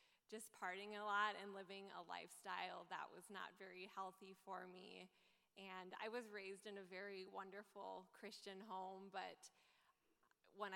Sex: female